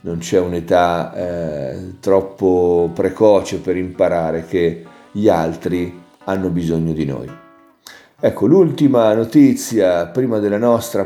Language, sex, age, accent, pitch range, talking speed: Italian, male, 40-59, native, 90-120 Hz, 110 wpm